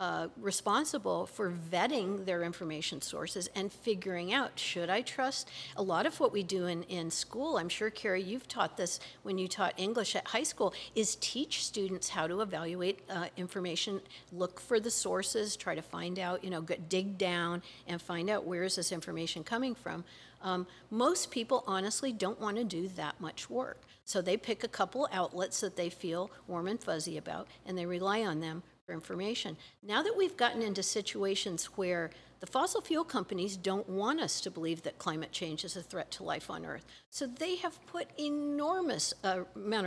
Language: English